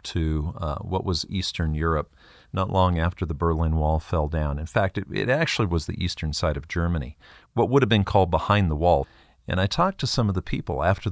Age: 40-59